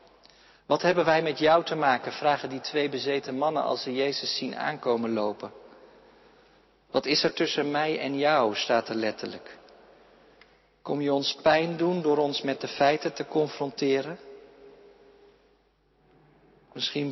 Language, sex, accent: Dutch, male, Dutch